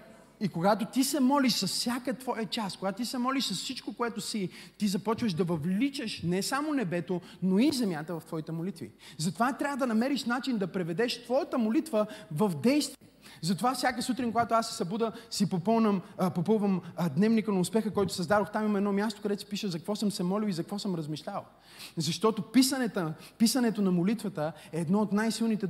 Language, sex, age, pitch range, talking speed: Bulgarian, male, 30-49, 175-235 Hz, 190 wpm